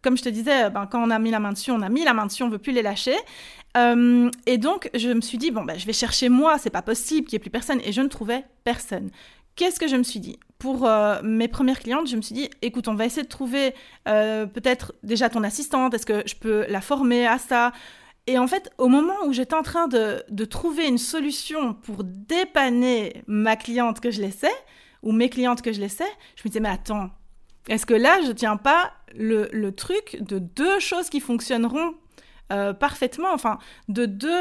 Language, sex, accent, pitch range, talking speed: French, female, French, 220-285 Hz, 240 wpm